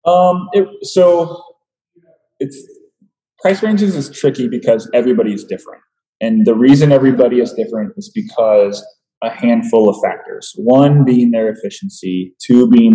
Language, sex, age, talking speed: English, male, 20-39, 140 wpm